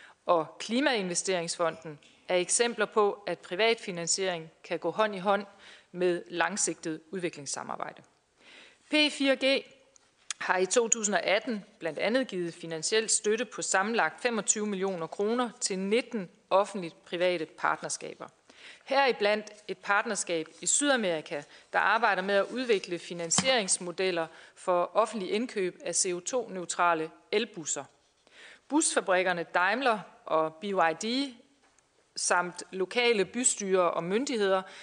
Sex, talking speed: female, 105 wpm